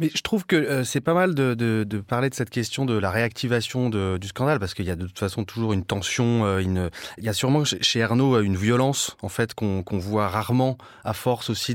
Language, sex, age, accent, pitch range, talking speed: French, male, 30-49, French, 110-145 Hz, 255 wpm